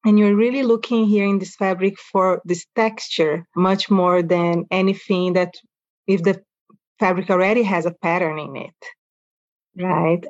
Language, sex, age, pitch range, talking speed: English, female, 30-49, 180-215 Hz, 150 wpm